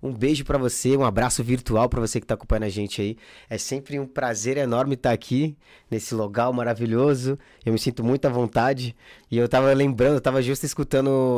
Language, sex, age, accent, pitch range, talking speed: Portuguese, male, 20-39, Brazilian, 115-130 Hz, 205 wpm